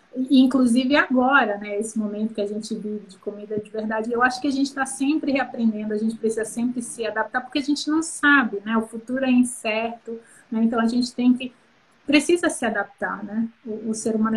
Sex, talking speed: female, 215 wpm